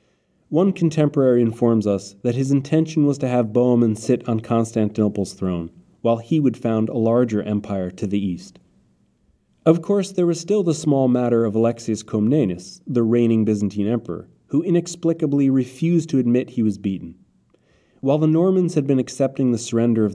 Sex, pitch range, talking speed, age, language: male, 105-140 Hz, 170 wpm, 30-49, English